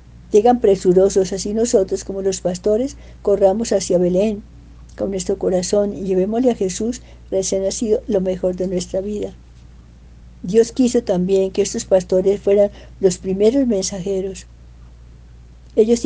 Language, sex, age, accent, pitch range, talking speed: Spanish, female, 60-79, American, 175-205 Hz, 130 wpm